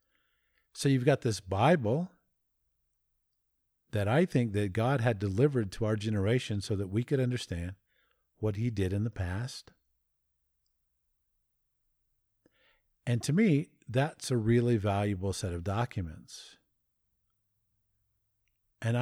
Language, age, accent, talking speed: English, 50-69, American, 115 wpm